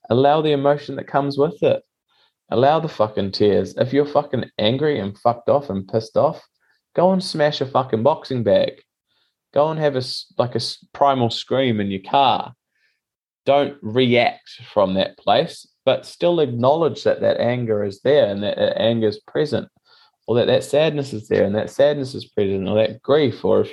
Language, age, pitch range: English, 20-39, 95-140 Hz